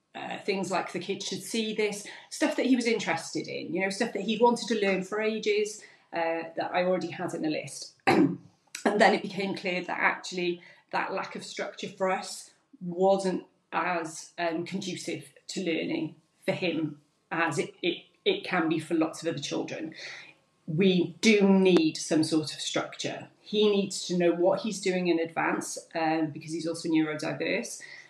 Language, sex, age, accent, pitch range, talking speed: English, female, 30-49, British, 165-205 Hz, 180 wpm